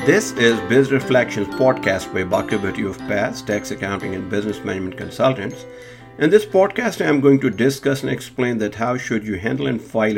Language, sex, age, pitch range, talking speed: English, male, 50-69, 110-135 Hz, 190 wpm